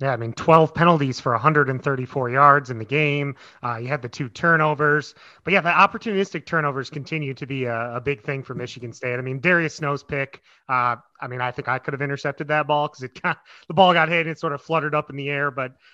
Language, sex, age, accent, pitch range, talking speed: English, male, 30-49, American, 130-165 Hz, 245 wpm